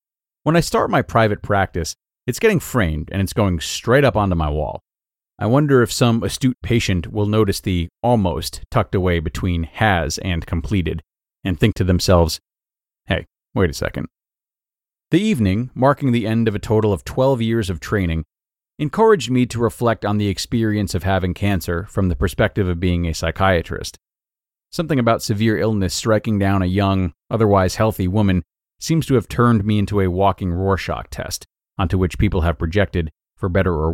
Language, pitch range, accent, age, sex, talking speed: English, 90-115 Hz, American, 30-49, male, 175 wpm